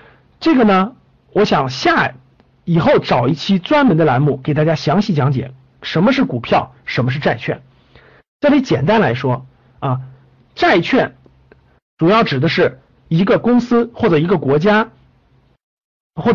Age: 50-69